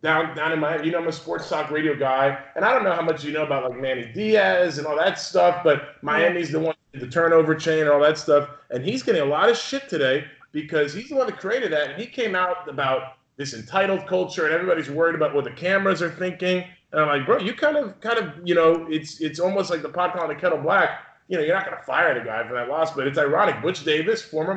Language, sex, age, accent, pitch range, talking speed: English, male, 30-49, American, 140-185 Hz, 270 wpm